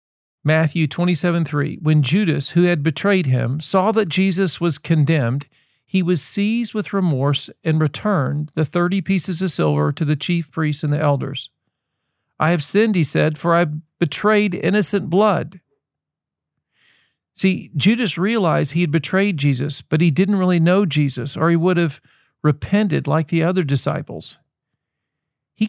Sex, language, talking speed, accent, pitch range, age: male, English, 155 wpm, American, 145-180 Hz, 50-69